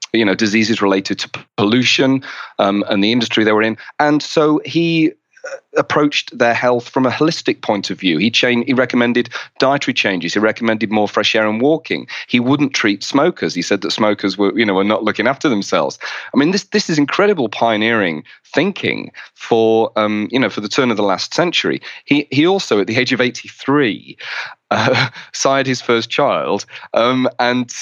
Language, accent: English, British